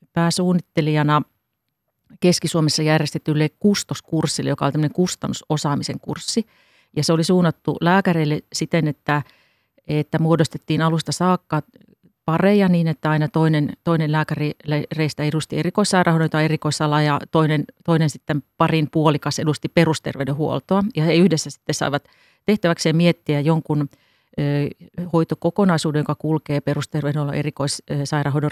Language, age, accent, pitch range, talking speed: Finnish, 40-59, native, 150-170 Hz, 105 wpm